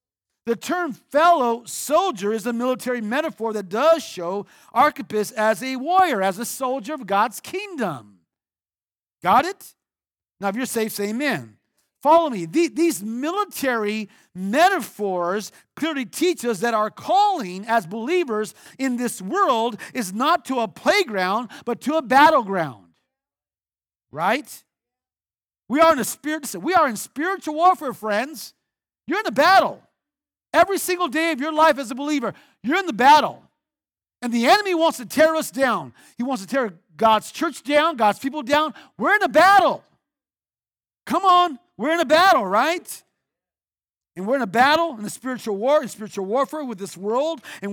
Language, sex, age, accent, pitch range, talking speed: English, male, 50-69, American, 205-315 Hz, 160 wpm